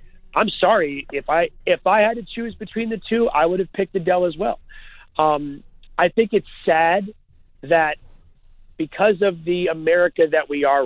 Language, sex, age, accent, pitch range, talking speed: English, male, 40-59, American, 155-200 Hz, 175 wpm